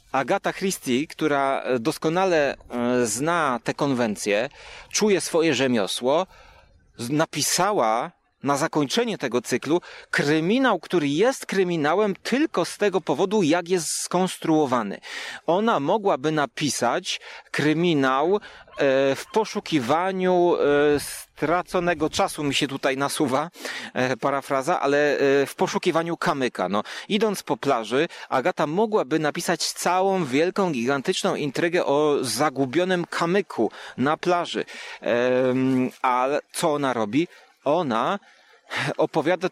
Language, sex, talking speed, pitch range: Polish, male, 100 wpm, 135-175 Hz